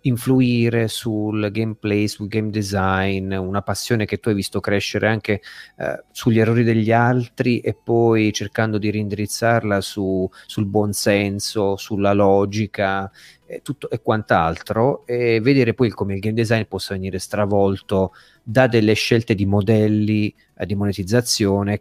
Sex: male